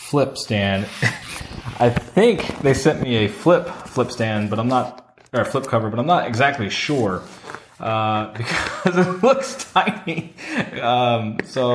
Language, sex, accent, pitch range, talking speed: English, male, American, 110-130 Hz, 155 wpm